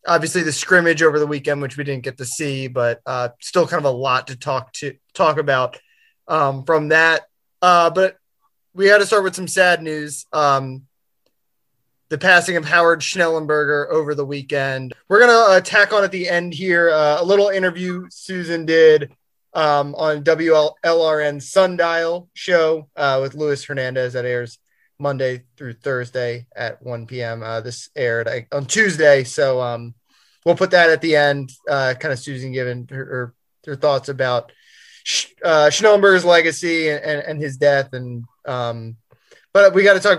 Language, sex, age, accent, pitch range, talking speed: English, male, 20-39, American, 130-175 Hz, 175 wpm